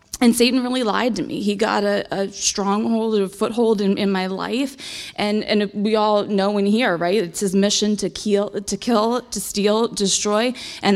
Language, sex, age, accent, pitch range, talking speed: English, female, 20-39, American, 200-240 Hz, 195 wpm